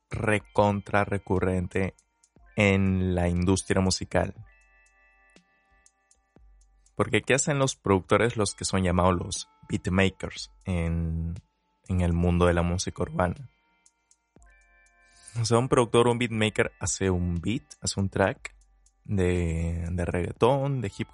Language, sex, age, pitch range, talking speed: Spanish, male, 20-39, 90-115 Hz, 120 wpm